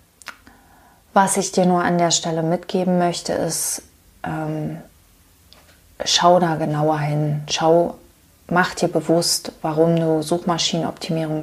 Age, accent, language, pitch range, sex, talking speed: 20-39, German, German, 165-190 Hz, female, 110 wpm